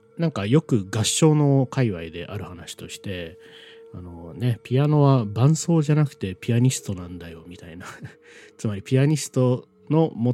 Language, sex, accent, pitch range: Japanese, male, native, 90-125 Hz